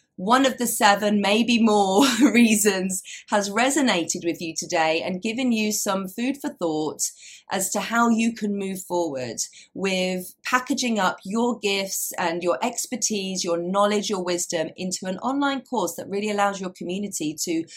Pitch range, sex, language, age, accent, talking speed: 170-215 Hz, female, English, 30-49, British, 160 wpm